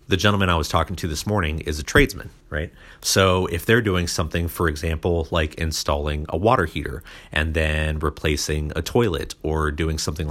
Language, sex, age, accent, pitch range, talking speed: English, male, 40-59, American, 80-95 Hz, 185 wpm